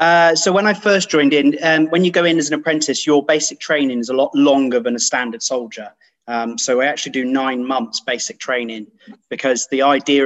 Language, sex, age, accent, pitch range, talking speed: English, male, 30-49, British, 120-145 Hz, 220 wpm